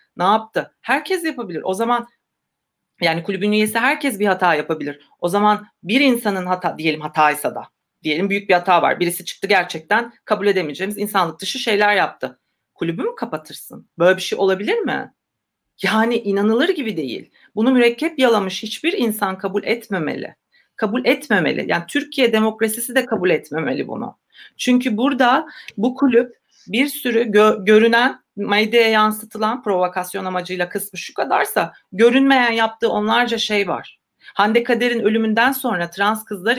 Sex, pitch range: female, 185-240 Hz